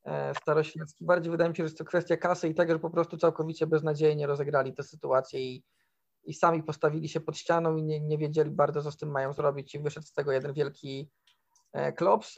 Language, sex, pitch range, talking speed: Polish, male, 150-170 Hz, 215 wpm